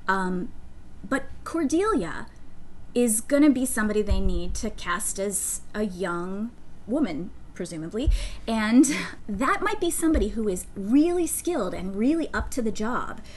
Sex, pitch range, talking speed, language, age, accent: female, 190-250 Hz, 145 wpm, English, 20-39, American